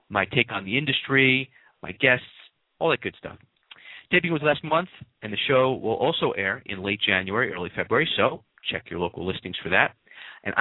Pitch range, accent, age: 105-140 Hz, American, 40-59